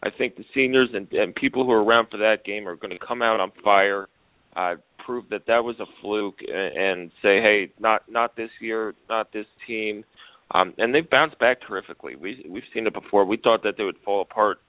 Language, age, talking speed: English, 30-49, 225 wpm